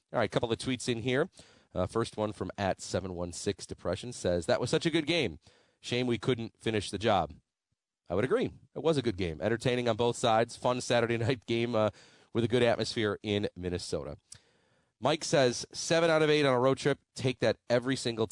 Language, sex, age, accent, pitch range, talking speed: English, male, 40-59, American, 95-120 Hz, 205 wpm